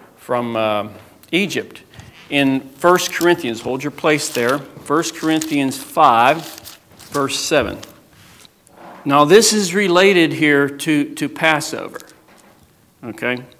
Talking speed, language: 105 wpm, English